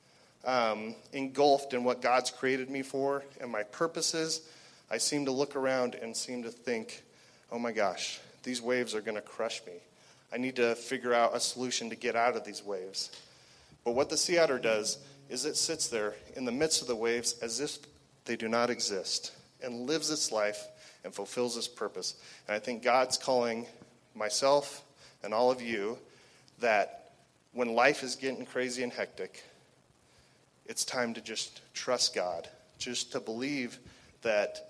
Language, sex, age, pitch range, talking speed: English, male, 30-49, 115-140 Hz, 175 wpm